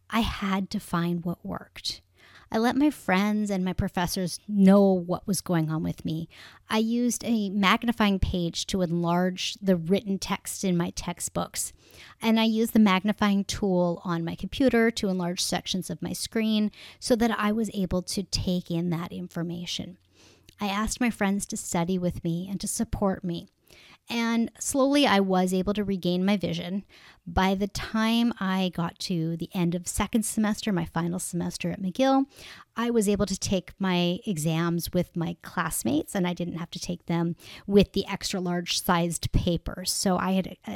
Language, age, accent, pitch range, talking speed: English, 30-49, American, 175-210 Hz, 180 wpm